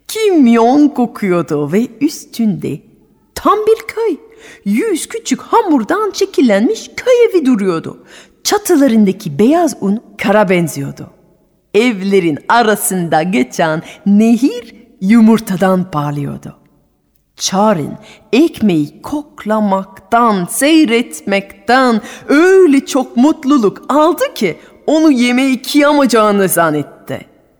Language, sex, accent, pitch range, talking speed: Turkish, female, native, 180-275 Hz, 85 wpm